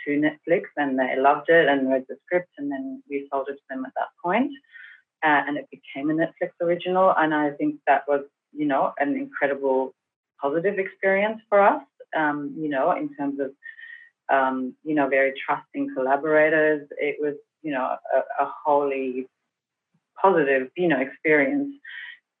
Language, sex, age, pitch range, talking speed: English, female, 30-49, 145-180 Hz, 170 wpm